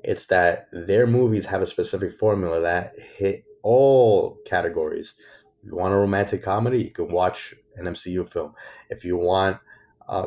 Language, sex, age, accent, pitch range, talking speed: English, male, 30-49, American, 95-140 Hz, 160 wpm